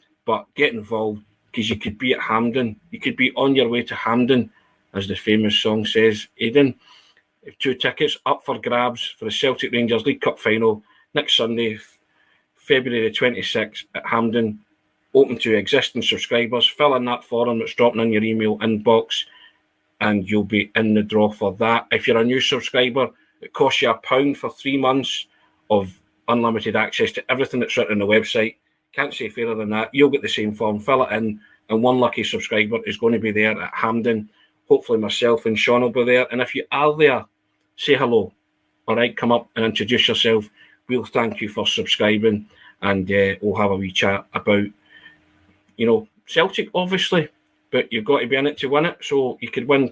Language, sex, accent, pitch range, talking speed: English, male, British, 105-130 Hz, 195 wpm